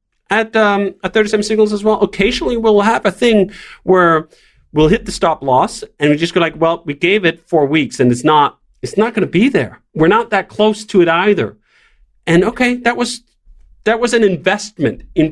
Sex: male